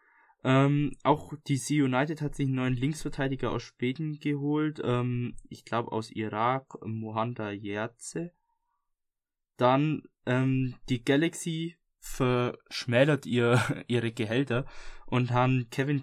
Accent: German